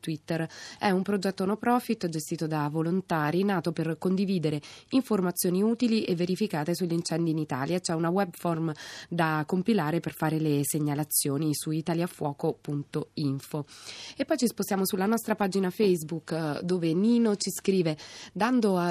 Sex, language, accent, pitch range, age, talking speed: female, Italian, native, 165-205 Hz, 20-39, 145 wpm